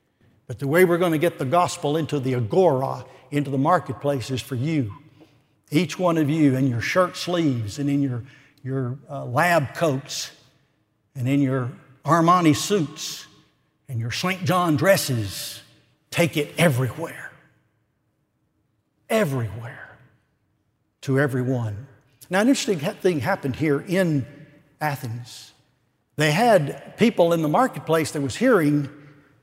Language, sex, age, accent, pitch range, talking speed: English, male, 60-79, American, 140-180 Hz, 135 wpm